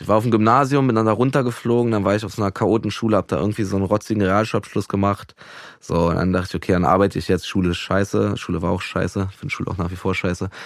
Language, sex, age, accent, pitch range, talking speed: German, male, 20-39, German, 95-110 Hz, 270 wpm